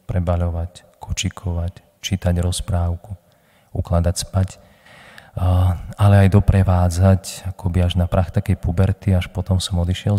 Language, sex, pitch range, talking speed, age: Slovak, male, 90-100 Hz, 110 wpm, 40-59